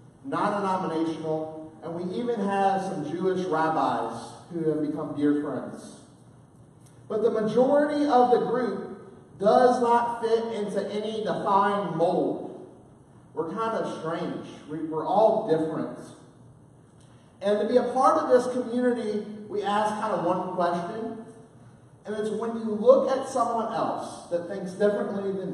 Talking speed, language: 140 wpm, English